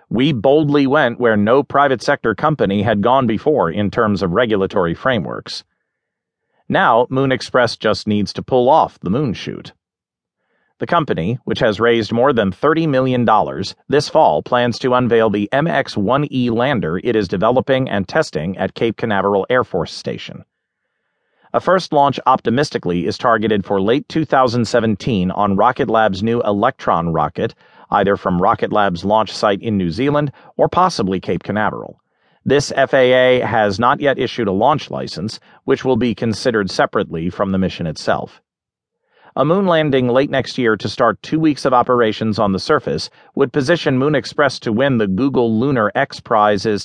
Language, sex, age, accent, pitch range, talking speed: English, male, 40-59, American, 105-135 Hz, 165 wpm